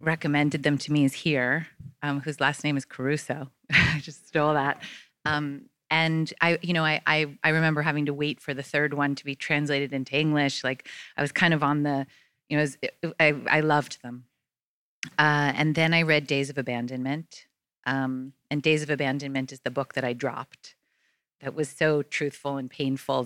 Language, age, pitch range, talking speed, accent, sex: English, 30-49, 140-165 Hz, 195 wpm, American, female